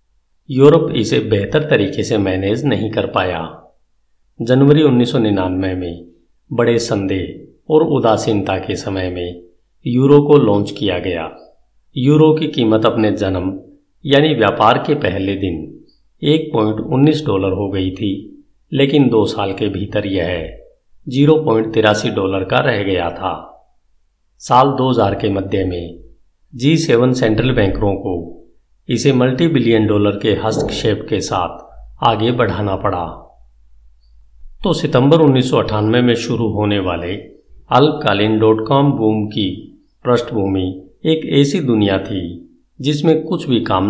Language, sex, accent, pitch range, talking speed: Hindi, male, native, 95-130 Hz, 130 wpm